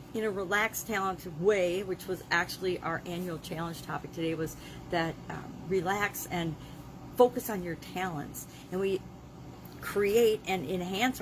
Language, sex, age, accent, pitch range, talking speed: English, female, 40-59, American, 165-200 Hz, 145 wpm